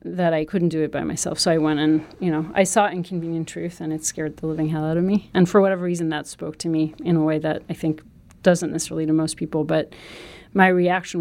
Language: English